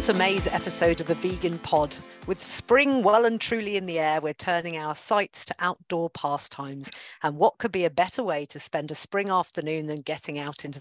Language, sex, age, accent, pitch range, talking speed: English, female, 50-69, British, 150-195 Hz, 210 wpm